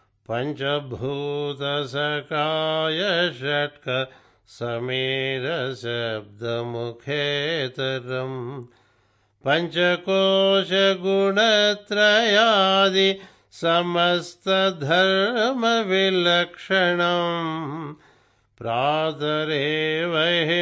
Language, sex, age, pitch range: Telugu, male, 60-79, 125-170 Hz